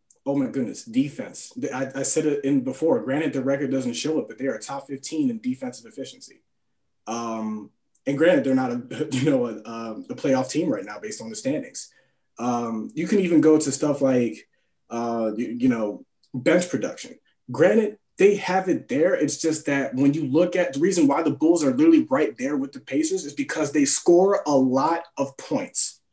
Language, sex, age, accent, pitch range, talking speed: English, male, 20-39, American, 135-215 Hz, 200 wpm